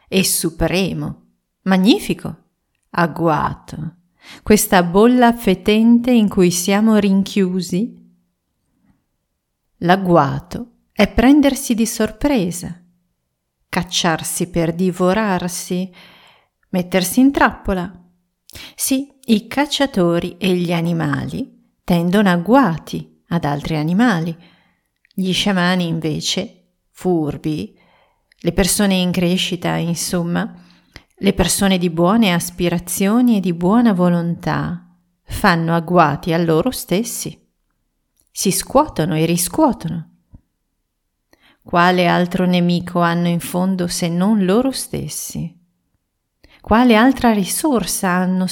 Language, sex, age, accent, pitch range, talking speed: Italian, female, 40-59, native, 170-215 Hz, 90 wpm